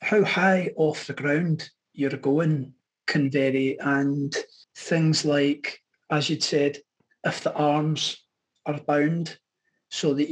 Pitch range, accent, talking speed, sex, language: 145-165 Hz, British, 130 wpm, male, English